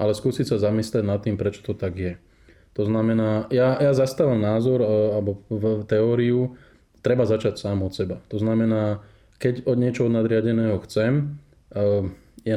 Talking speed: 155 wpm